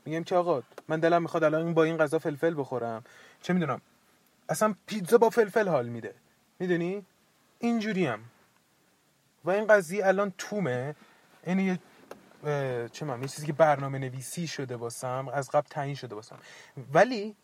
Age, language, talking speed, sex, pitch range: 30-49, Persian, 160 wpm, male, 135-190 Hz